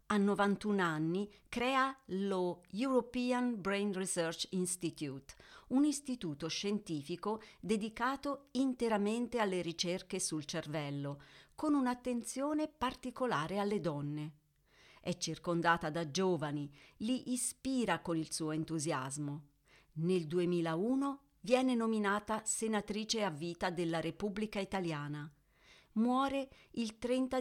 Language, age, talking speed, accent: Italian, 40-59, 100 wpm, native